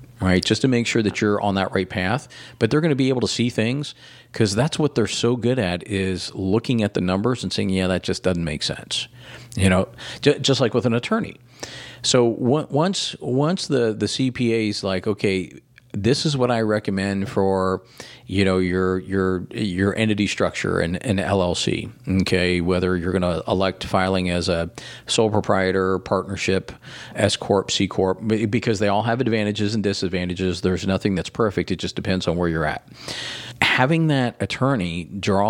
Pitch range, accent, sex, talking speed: 95-120 Hz, American, male, 190 wpm